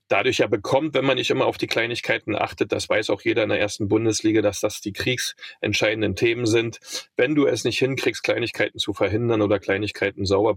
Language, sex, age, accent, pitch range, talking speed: German, male, 40-59, German, 110-165 Hz, 205 wpm